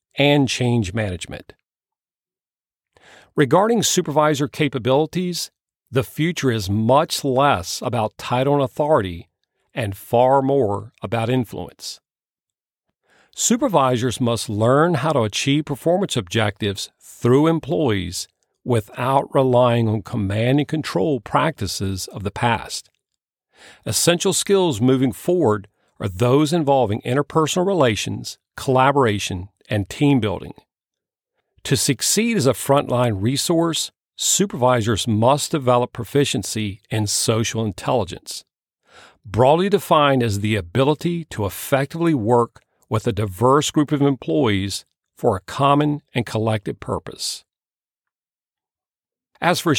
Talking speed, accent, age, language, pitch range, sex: 105 wpm, American, 50-69, English, 110-150 Hz, male